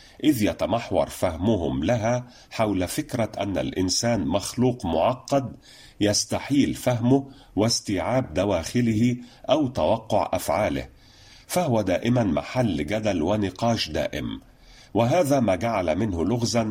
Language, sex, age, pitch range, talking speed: Arabic, male, 40-59, 110-135 Hz, 100 wpm